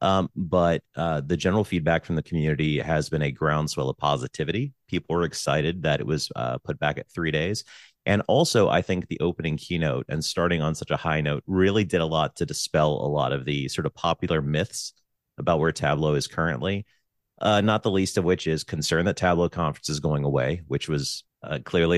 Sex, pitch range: male, 75-90 Hz